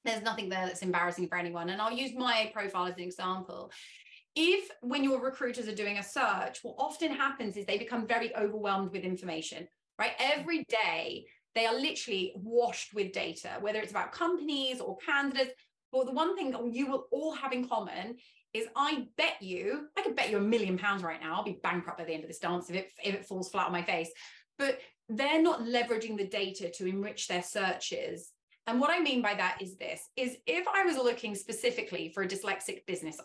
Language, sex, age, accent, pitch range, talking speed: English, female, 30-49, British, 185-255 Hz, 215 wpm